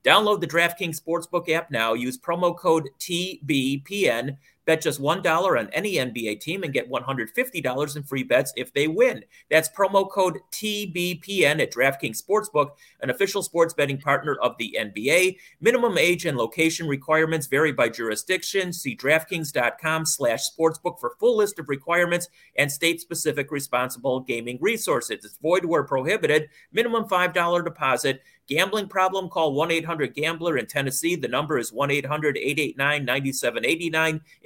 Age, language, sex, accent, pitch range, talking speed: 30-49, English, male, American, 145-180 Hz, 135 wpm